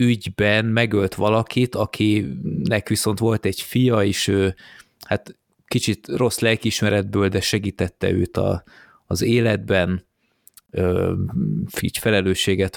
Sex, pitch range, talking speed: male, 95-115 Hz, 110 wpm